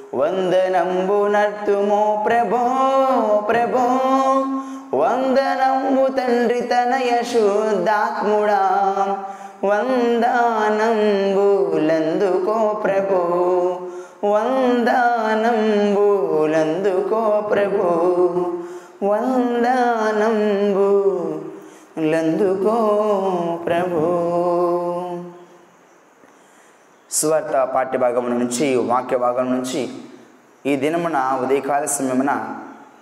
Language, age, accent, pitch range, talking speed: Telugu, 20-39, native, 160-220 Hz, 45 wpm